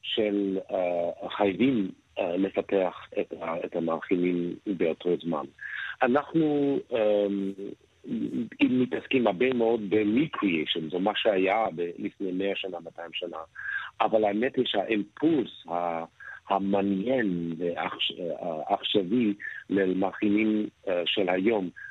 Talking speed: 95 wpm